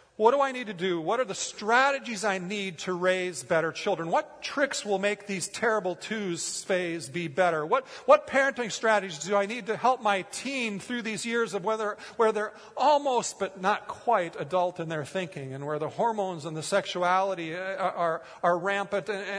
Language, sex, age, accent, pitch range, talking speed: English, male, 40-59, American, 170-260 Hz, 200 wpm